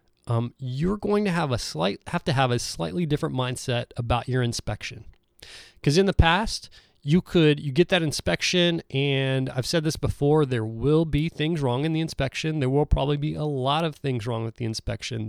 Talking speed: 205 wpm